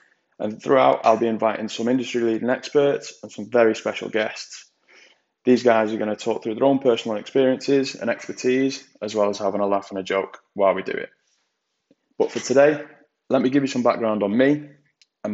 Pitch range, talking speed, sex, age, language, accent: 100-125 Hz, 200 wpm, male, 20-39, English, British